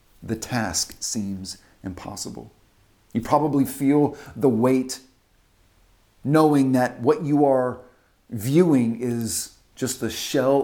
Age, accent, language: 40-59, American, English